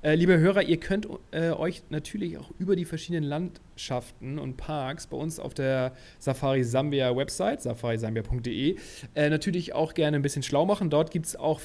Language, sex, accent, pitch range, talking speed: German, male, German, 135-170 Hz, 165 wpm